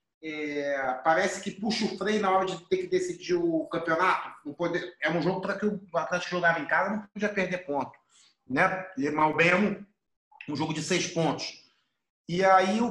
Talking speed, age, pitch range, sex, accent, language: 200 wpm, 30-49, 150-195 Hz, male, Brazilian, Portuguese